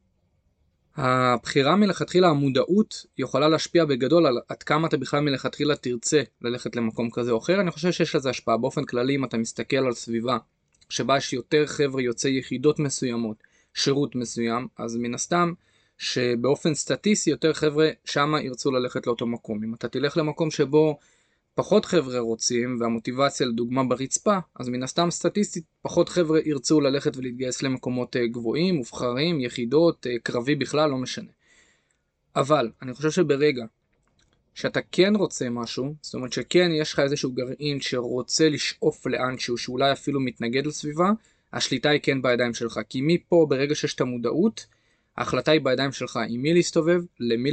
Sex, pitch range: male, 120-155 Hz